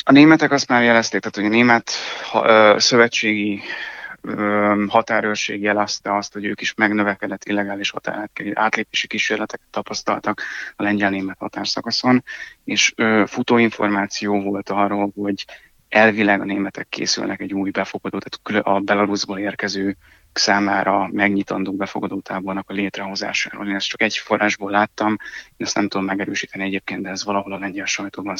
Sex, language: male, Hungarian